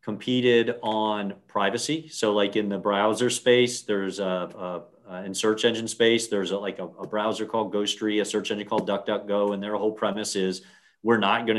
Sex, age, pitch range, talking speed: male, 40-59, 95-110 Hz, 200 wpm